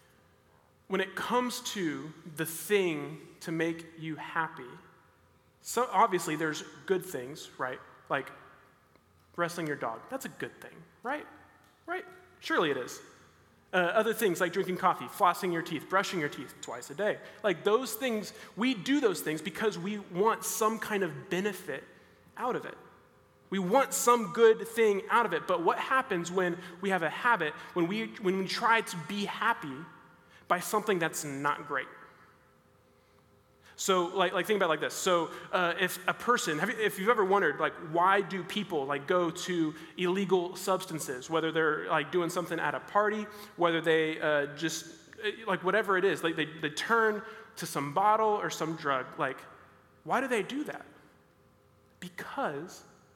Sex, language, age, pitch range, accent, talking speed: male, English, 20-39, 160-210 Hz, American, 170 wpm